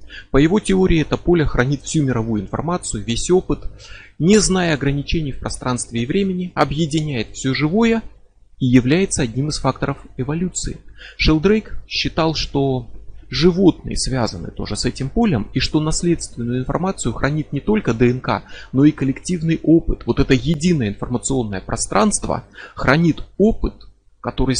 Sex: male